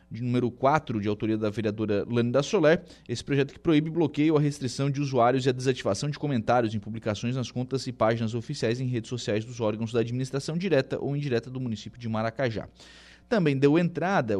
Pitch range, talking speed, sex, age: 110-140 Hz, 200 wpm, male, 20-39